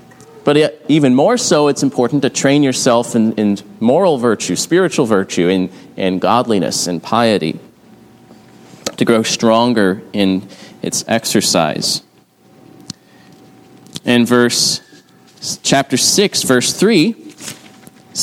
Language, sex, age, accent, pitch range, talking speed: English, male, 30-49, American, 115-145 Hz, 110 wpm